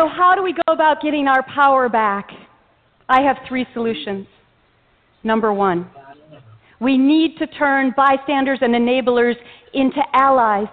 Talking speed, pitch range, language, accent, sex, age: 140 wpm, 240-330 Hz, English, American, female, 40-59